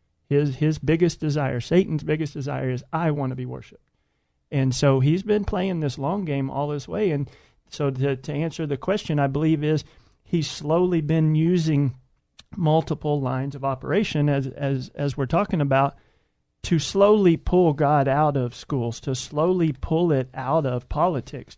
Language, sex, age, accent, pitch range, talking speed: English, male, 40-59, American, 135-160 Hz, 170 wpm